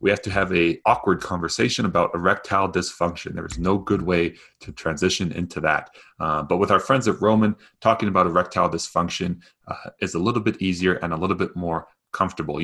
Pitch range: 85-100 Hz